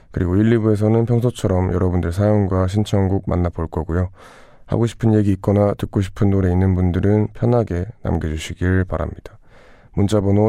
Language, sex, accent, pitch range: Korean, male, native, 90-105 Hz